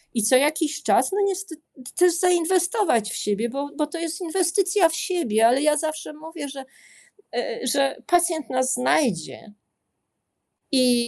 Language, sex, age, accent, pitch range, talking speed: Polish, female, 40-59, native, 175-265 Hz, 145 wpm